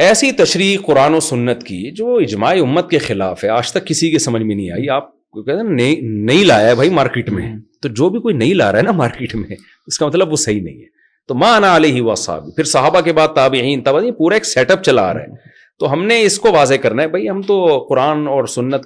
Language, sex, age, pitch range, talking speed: Urdu, male, 40-59, 120-165 Hz, 260 wpm